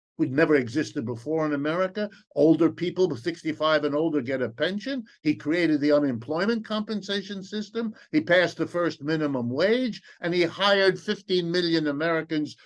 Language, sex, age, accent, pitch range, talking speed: English, male, 60-79, American, 145-185 Hz, 150 wpm